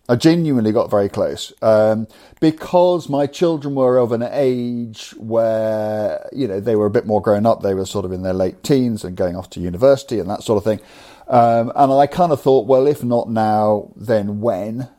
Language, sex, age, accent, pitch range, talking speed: English, male, 50-69, British, 110-145 Hz, 210 wpm